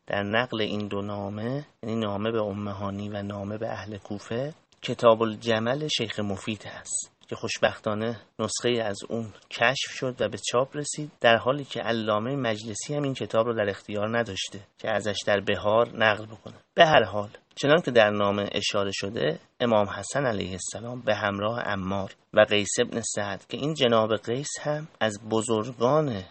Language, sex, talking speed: English, male, 170 wpm